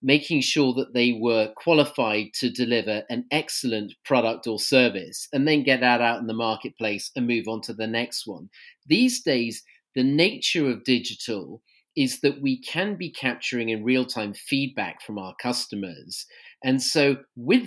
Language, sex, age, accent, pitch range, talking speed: English, male, 40-59, British, 120-160 Hz, 170 wpm